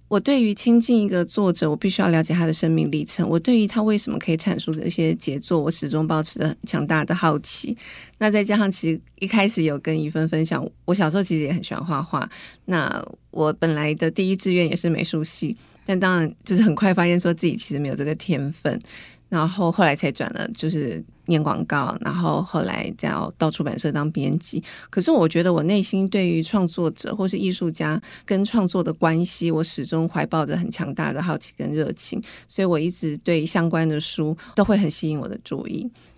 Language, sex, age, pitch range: Chinese, female, 20-39, 160-200 Hz